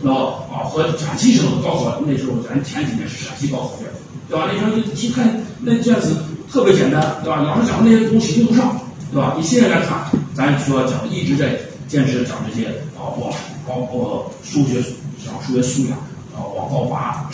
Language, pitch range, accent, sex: Chinese, 125-165 Hz, native, male